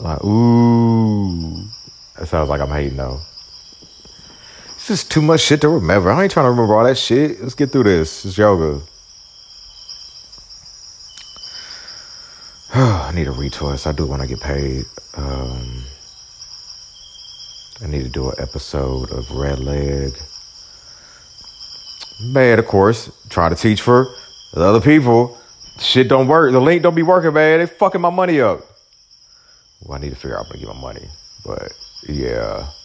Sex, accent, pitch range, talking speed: male, American, 75-115 Hz, 155 wpm